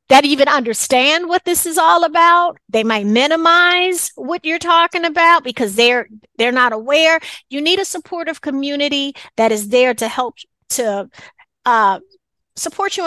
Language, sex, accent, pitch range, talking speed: English, female, American, 245-335 Hz, 155 wpm